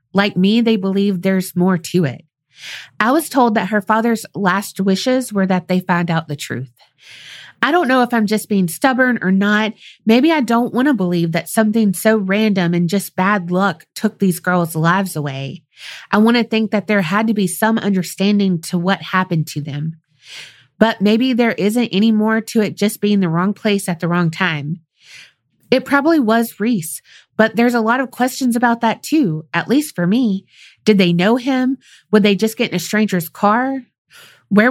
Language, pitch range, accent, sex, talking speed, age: English, 175-225 Hz, American, female, 200 wpm, 30-49